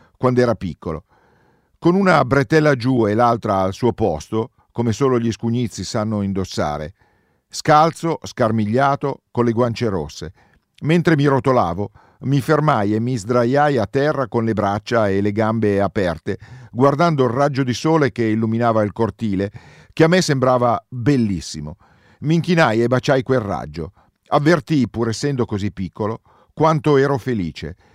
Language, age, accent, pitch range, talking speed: Italian, 50-69, native, 105-140 Hz, 150 wpm